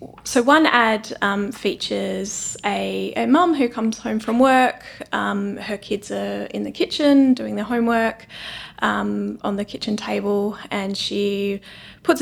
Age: 20-39